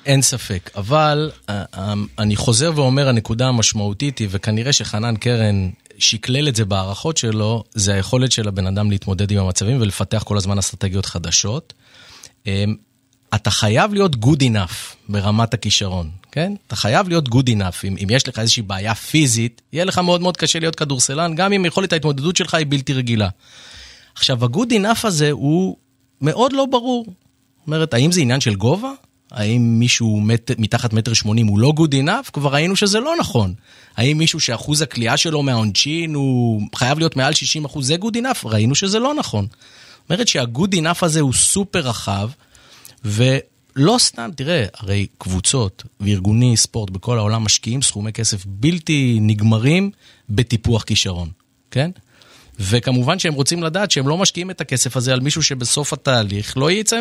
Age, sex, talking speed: 30-49, male, 160 wpm